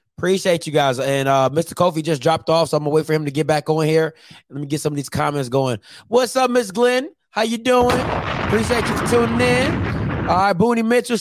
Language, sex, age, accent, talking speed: English, male, 20-39, American, 240 wpm